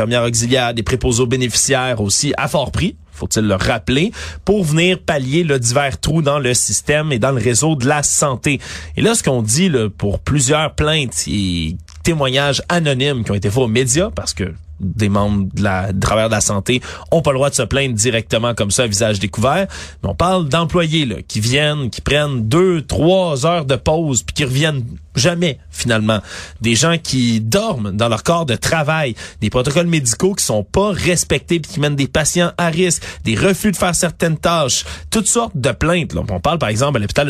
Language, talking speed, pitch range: French, 205 wpm, 110-160 Hz